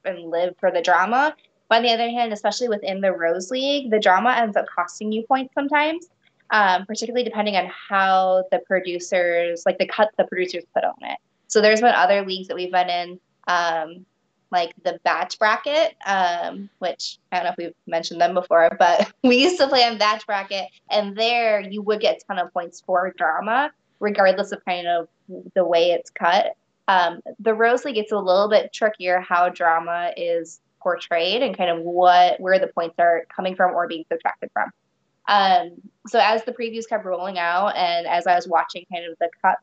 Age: 20-39